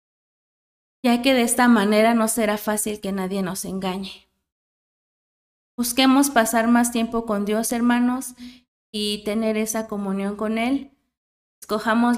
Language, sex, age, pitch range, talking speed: Spanish, female, 30-49, 195-230 Hz, 130 wpm